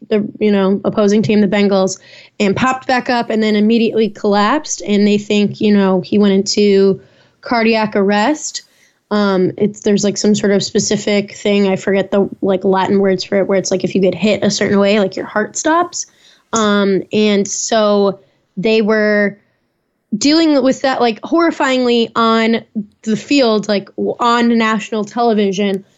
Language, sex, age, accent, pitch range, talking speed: English, female, 10-29, American, 195-225 Hz, 170 wpm